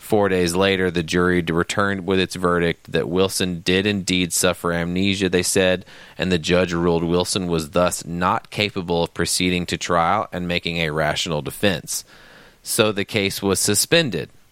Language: English